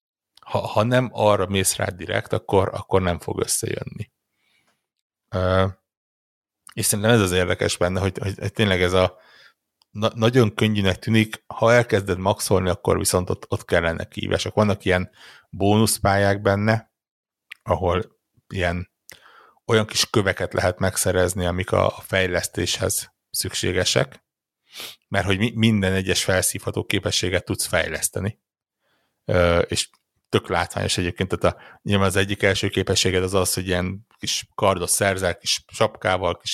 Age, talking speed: 60-79, 135 wpm